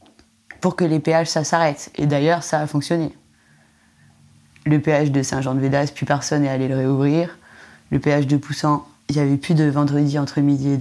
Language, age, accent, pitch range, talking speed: French, 20-39, French, 145-195 Hz, 205 wpm